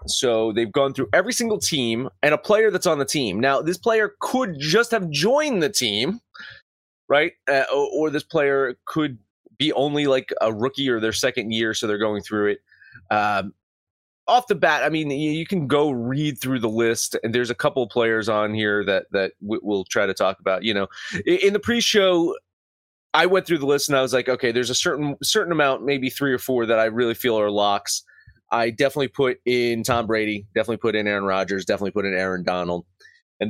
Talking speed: 210 wpm